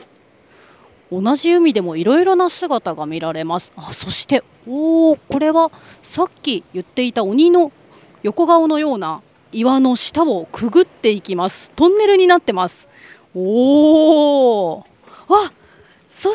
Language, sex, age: Japanese, female, 30-49